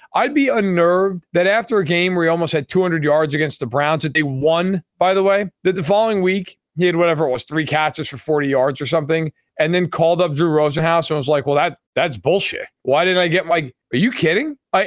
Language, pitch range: English, 150-195 Hz